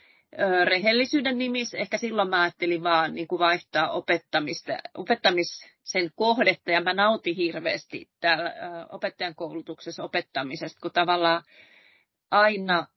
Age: 30-49